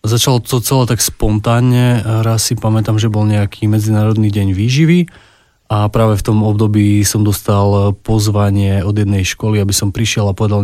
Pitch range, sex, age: 100-110 Hz, male, 20-39